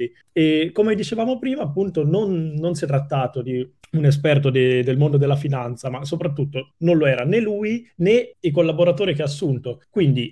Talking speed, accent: 180 wpm, native